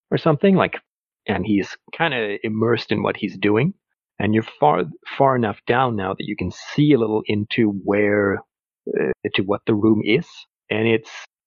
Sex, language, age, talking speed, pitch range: male, English, 40-59, 185 wpm, 105-125 Hz